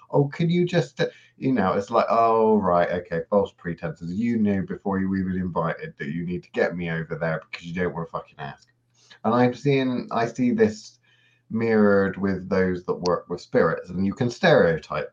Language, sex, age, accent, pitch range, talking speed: English, male, 30-49, British, 90-120 Hz, 200 wpm